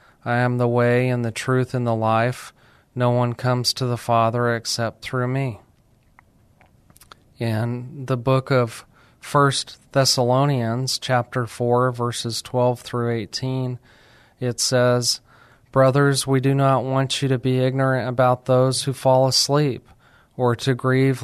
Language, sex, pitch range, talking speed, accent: English, male, 120-135 Hz, 140 wpm, American